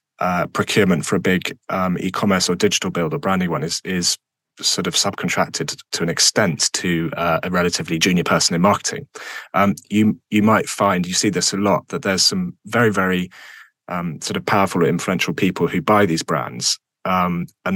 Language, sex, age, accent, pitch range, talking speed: English, male, 30-49, British, 90-125 Hz, 195 wpm